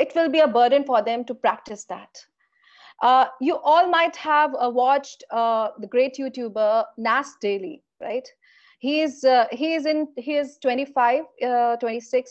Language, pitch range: English, 235-315 Hz